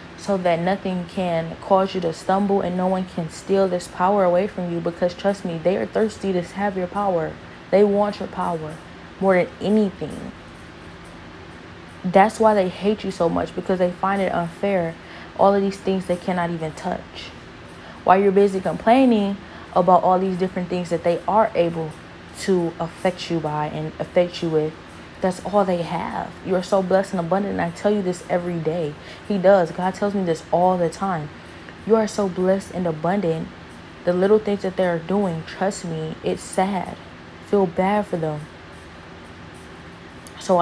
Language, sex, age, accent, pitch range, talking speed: English, female, 20-39, American, 170-195 Hz, 180 wpm